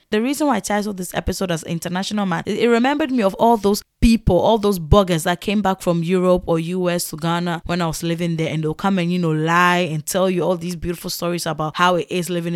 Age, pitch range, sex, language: 20-39, 170-225 Hz, female, English